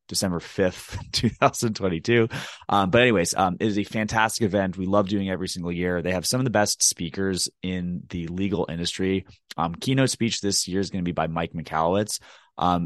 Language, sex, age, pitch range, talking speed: English, male, 20-39, 85-105 Hz, 200 wpm